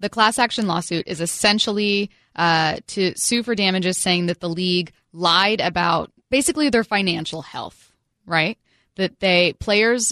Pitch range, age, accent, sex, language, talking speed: 155-195 Hz, 20-39, American, female, English, 150 wpm